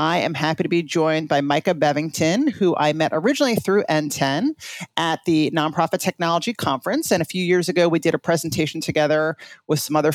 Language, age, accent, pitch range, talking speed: English, 40-59, American, 155-205 Hz, 195 wpm